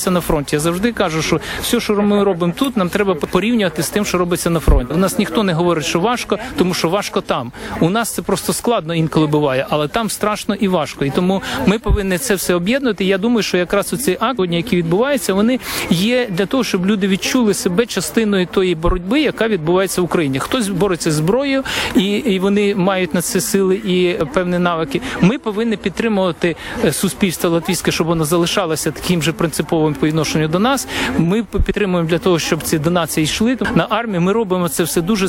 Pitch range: 170-205 Hz